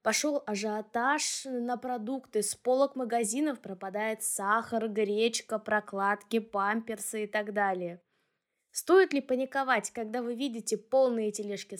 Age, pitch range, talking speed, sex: 20-39, 210-265 Hz, 115 wpm, female